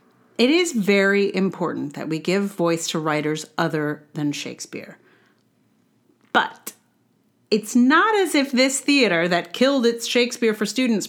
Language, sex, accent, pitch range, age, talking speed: English, female, American, 175-245 Hz, 40-59, 140 wpm